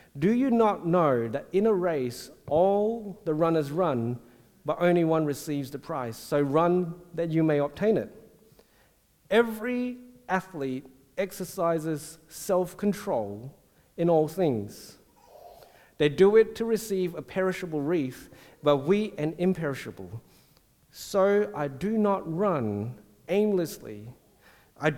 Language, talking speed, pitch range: English, 125 wpm, 140-195 Hz